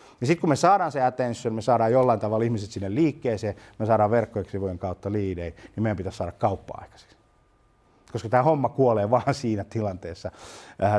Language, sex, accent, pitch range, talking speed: Finnish, male, native, 105-140 Hz, 185 wpm